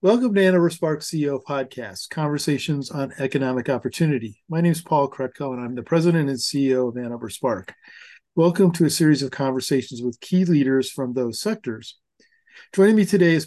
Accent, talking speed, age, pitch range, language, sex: American, 180 wpm, 50-69, 130-165 Hz, English, male